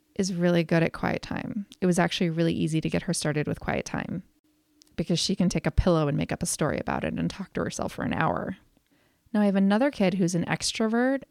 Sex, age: female, 20-39